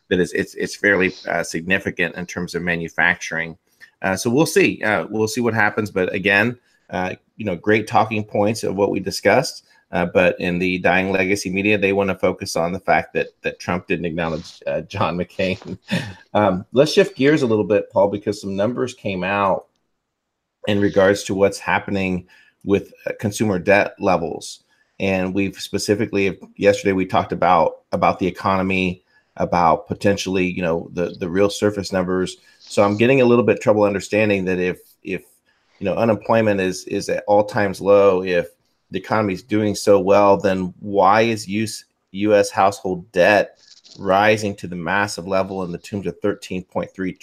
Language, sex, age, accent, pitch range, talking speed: English, male, 30-49, American, 90-105 Hz, 180 wpm